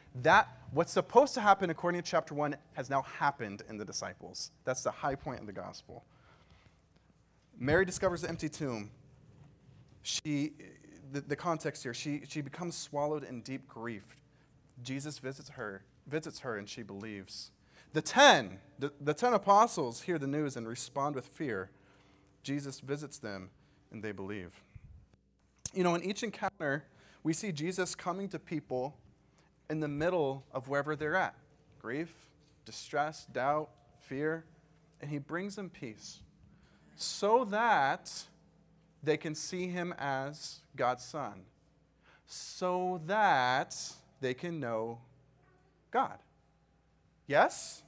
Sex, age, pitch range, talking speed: male, 30-49, 130-165 Hz, 135 wpm